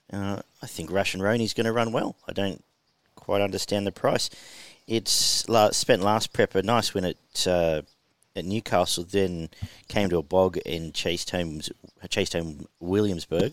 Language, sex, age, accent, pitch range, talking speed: English, male, 40-59, Australian, 90-105 Hz, 175 wpm